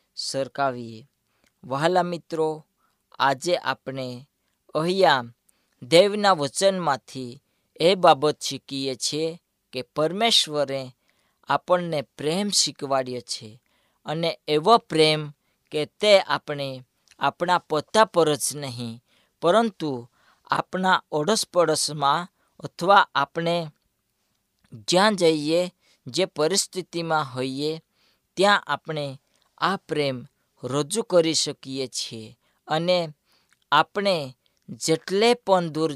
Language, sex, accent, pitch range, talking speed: Gujarati, female, native, 135-175 Hz, 75 wpm